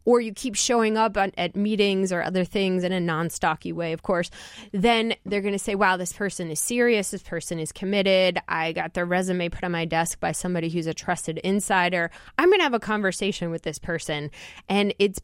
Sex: female